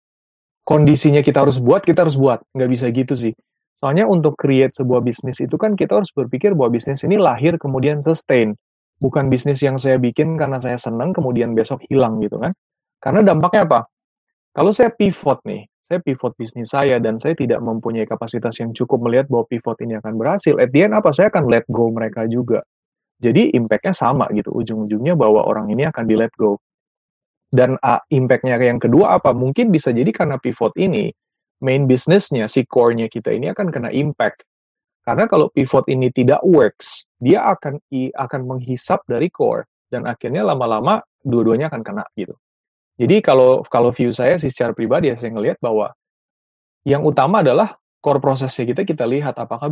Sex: male